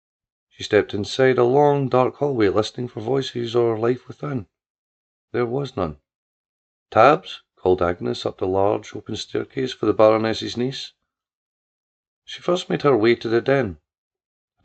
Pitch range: 105-130 Hz